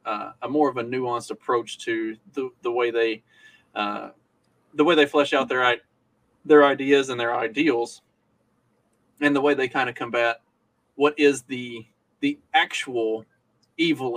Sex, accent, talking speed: male, American, 160 wpm